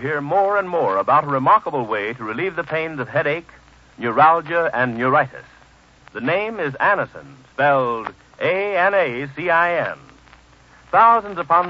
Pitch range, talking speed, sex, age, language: 145-190 Hz, 130 wpm, male, 60-79, English